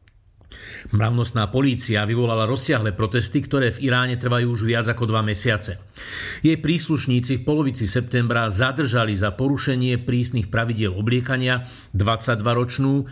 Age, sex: 50-69, male